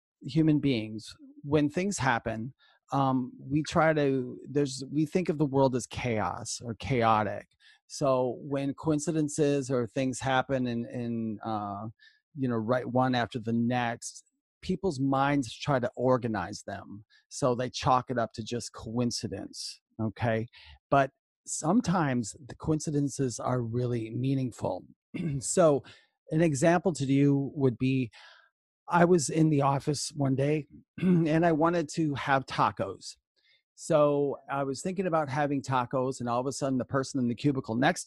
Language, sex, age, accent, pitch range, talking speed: English, male, 30-49, American, 120-155 Hz, 150 wpm